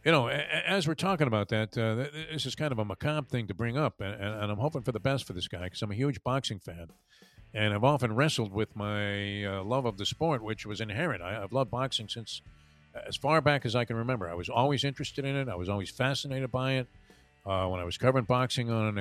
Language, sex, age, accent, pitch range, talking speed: English, male, 50-69, American, 105-140 Hz, 250 wpm